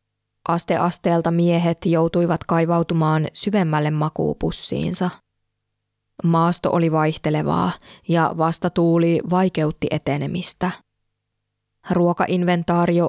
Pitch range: 150-175 Hz